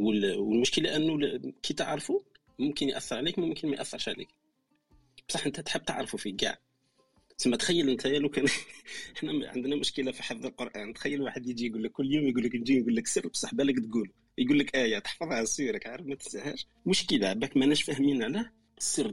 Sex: male